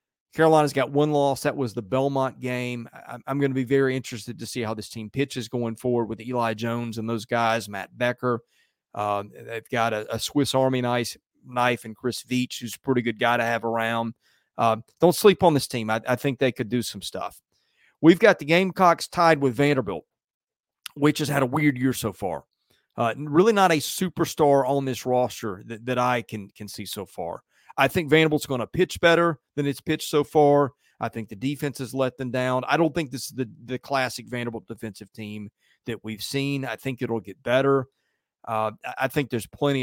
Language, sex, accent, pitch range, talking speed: English, male, American, 115-145 Hz, 210 wpm